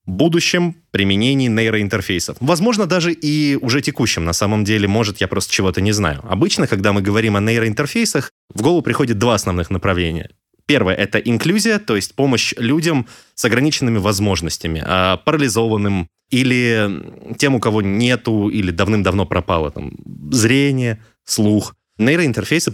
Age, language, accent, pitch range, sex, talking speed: 20-39, Russian, native, 95-130 Hz, male, 140 wpm